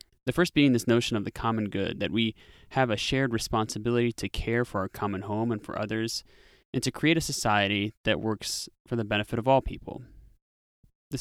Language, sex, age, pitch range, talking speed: English, male, 20-39, 105-125 Hz, 205 wpm